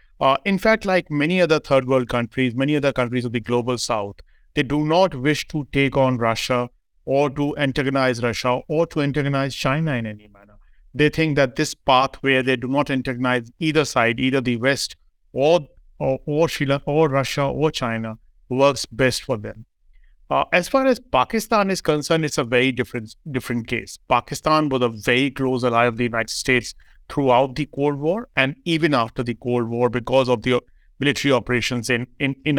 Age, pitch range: 50-69, 125-155 Hz